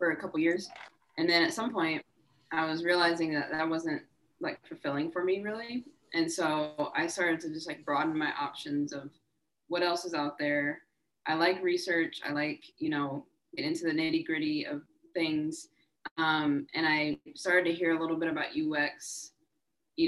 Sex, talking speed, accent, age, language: female, 180 wpm, American, 20-39, English